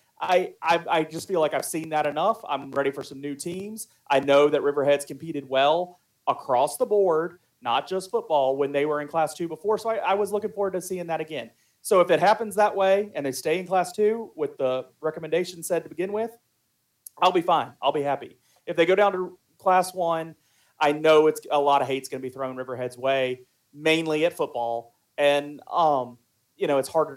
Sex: male